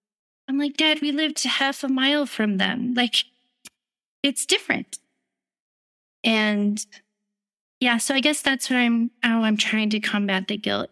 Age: 30-49